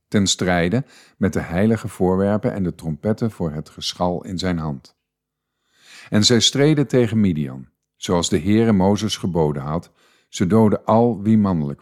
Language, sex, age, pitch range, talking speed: Dutch, male, 50-69, 85-115 Hz, 155 wpm